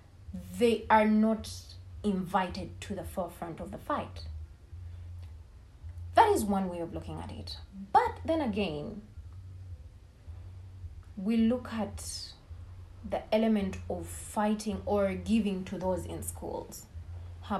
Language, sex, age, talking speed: English, female, 20-39, 120 wpm